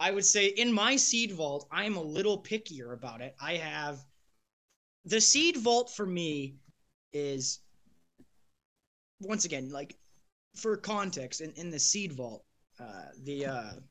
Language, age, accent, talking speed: English, 20-39, American, 145 wpm